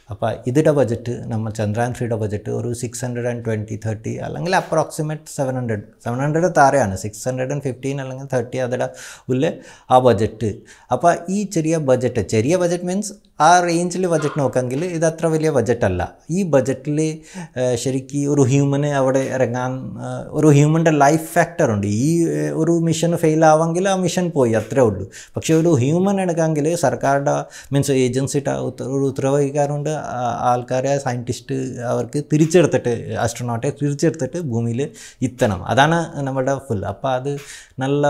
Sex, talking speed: male, 135 wpm